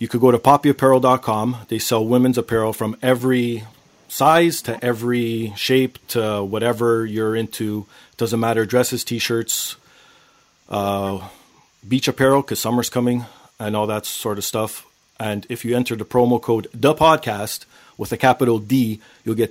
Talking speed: 145 wpm